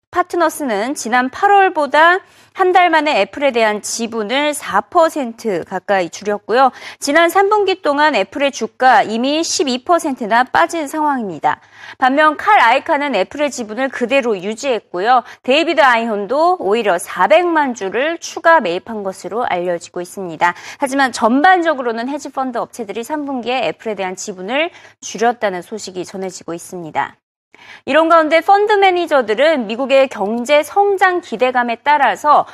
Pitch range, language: 225-325 Hz, Korean